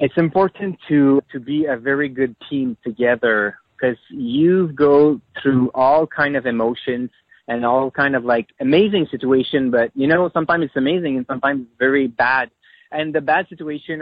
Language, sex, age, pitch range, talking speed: English, male, 30-49, 120-150 Hz, 170 wpm